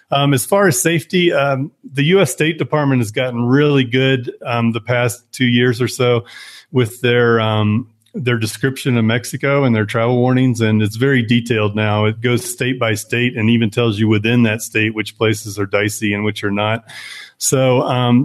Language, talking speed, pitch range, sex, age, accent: English, 195 wpm, 110-125 Hz, male, 30-49, American